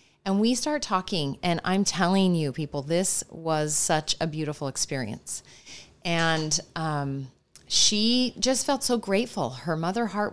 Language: English